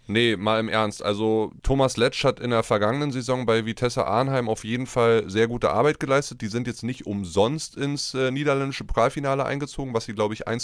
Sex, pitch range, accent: male, 110-135 Hz, German